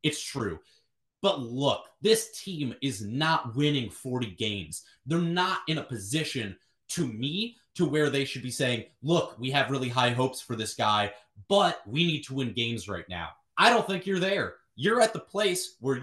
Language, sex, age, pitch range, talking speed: English, male, 30-49, 125-170 Hz, 190 wpm